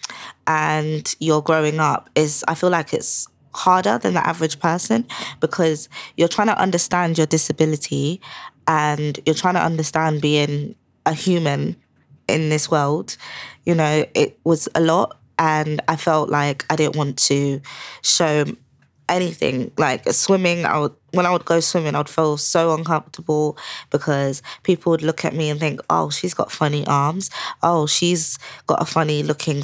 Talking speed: 160 wpm